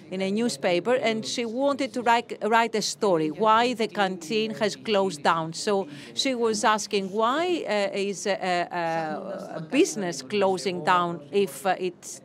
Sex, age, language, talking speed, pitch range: female, 40-59, Greek, 160 wpm, 180-220 Hz